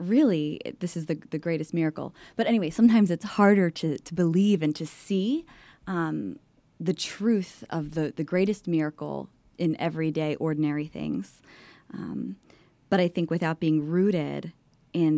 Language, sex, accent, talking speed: English, female, American, 150 wpm